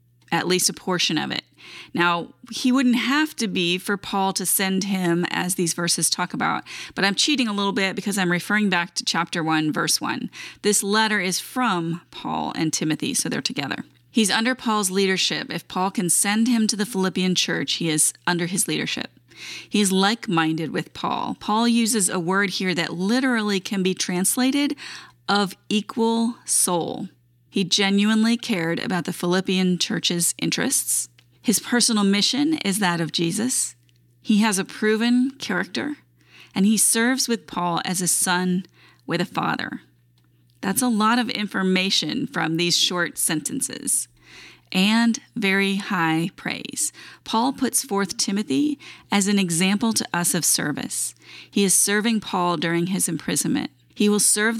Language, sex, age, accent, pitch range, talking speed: English, female, 30-49, American, 175-220 Hz, 160 wpm